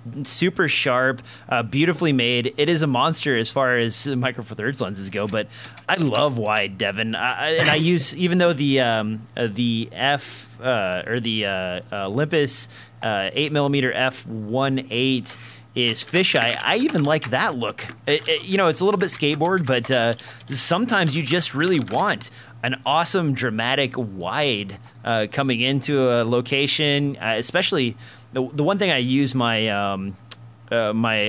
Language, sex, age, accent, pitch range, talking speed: English, male, 30-49, American, 115-140 Hz, 165 wpm